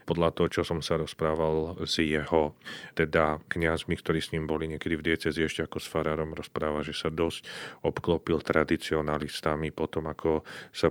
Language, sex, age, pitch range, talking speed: Slovak, male, 40-59, 80-85 Hz, 165 wpm